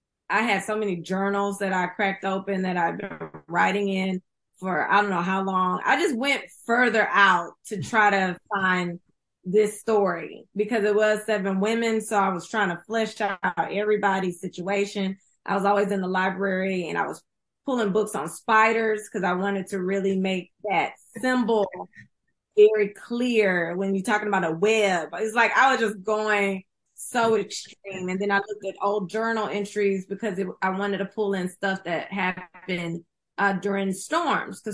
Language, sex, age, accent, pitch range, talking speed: English, female, 20-39, American, 185-215 Hz, 180 wpm